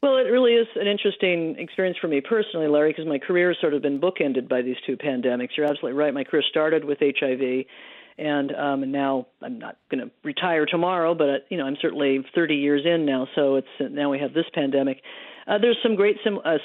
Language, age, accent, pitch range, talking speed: English, 50-69, American, 145-170 Hz, 225 wpm